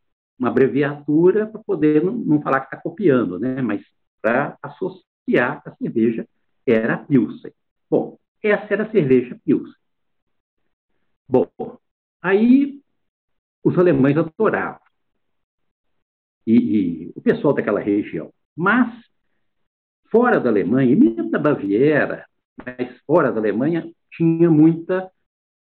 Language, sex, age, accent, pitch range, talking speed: Portuguese, male, 60-79, Brazilian, 125-185 Hz, 115 wpm